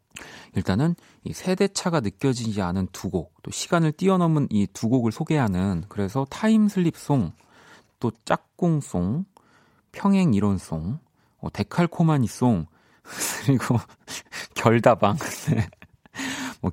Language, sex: Korean, male